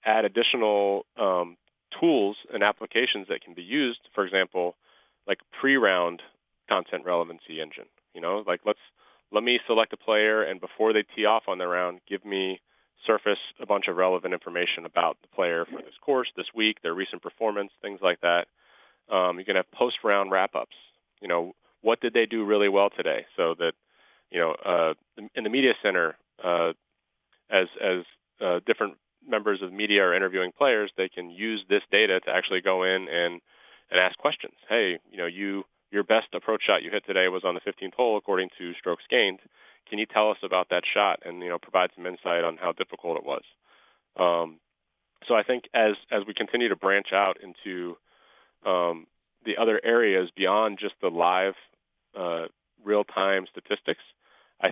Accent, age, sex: American, 30-49, male